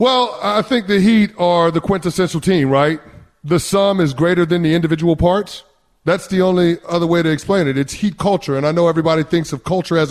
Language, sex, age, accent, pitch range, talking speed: English, male, 30-49, American, 160-210 Hz, 220 wpm